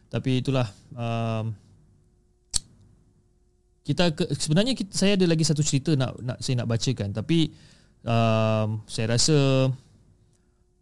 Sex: male